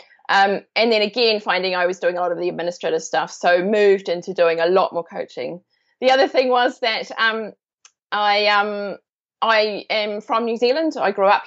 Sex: female